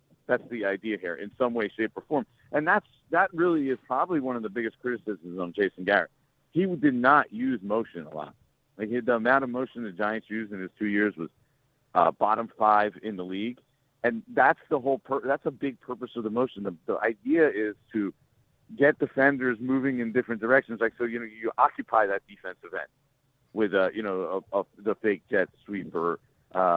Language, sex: English, male